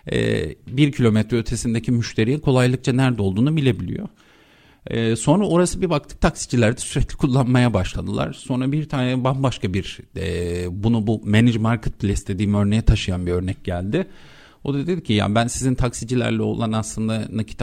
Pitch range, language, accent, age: 105-130 Hz, Turkish, native, 50-69